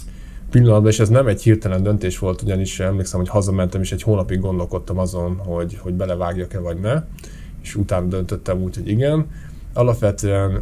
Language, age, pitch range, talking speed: Hungarian, 20-39, 90-105 Hz, 165 wpm